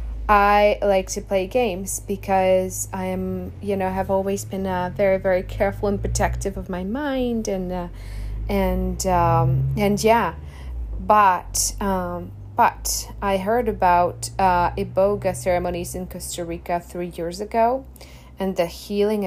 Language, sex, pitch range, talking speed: English, female, 170-200 Hz, 145 wpm